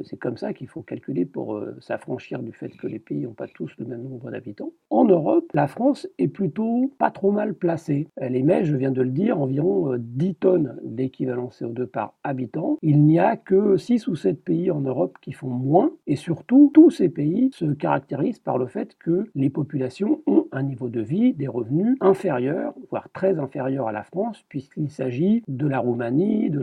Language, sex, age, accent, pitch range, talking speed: French, male, 50-69, French, 130-200 Hz, 205 wpm